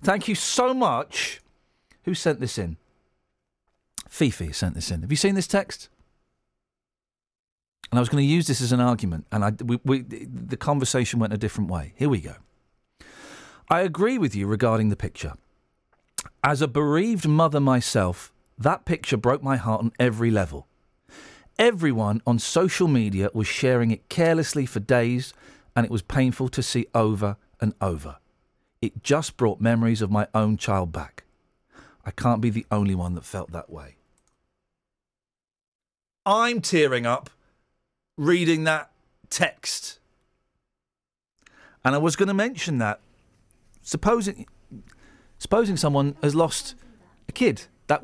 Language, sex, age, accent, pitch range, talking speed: English, male, 40-59, British, 105-155 Hz, 145 wpm